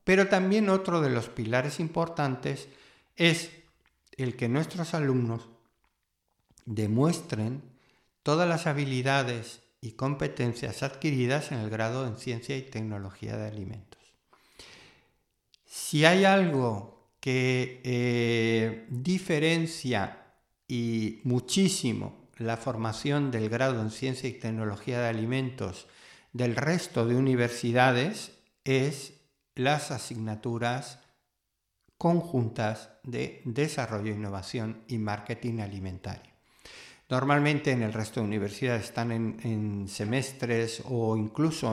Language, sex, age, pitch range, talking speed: Spanish, male, 50-69, 110-140 Hz, 105 wpm